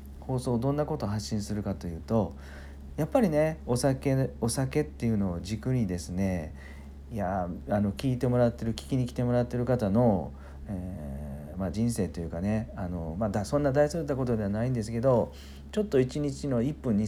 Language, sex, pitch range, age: Japanese, male, 70-110 Hz, 40-59